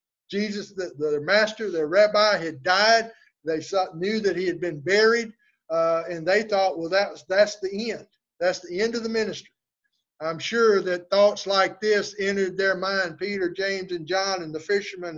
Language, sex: English, male